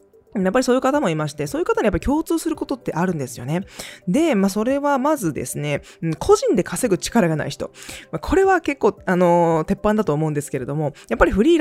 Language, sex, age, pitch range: Japanese, female, 20-39, 155-230 Hz